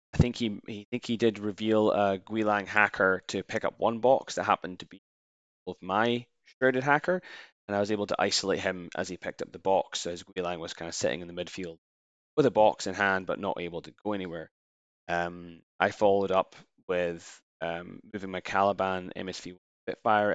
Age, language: 10-29, English